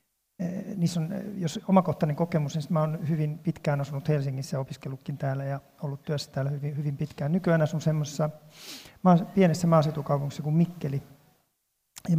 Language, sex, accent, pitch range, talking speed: Finnish, male, native, 150-180 Hz, 140 wpm